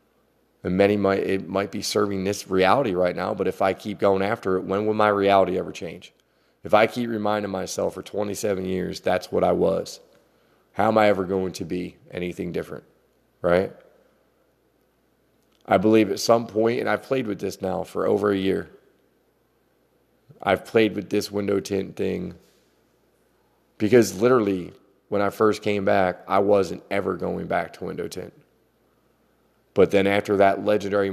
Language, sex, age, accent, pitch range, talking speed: English, male, 30-49, American, 95-115 Hz, 170 wpm